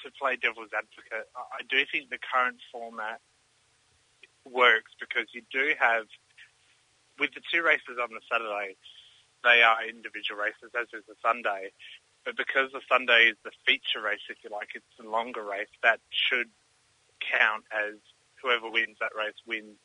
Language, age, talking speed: English, 30-49, 165 wpm